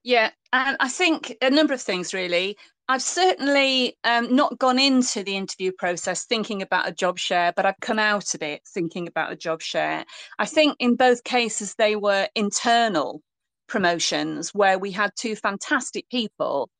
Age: 30-49